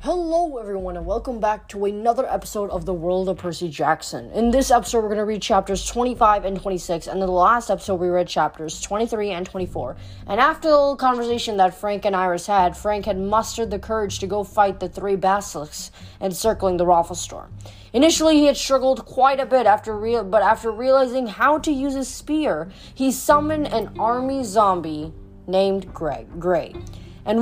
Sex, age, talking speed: female, 20-39, 190 wpm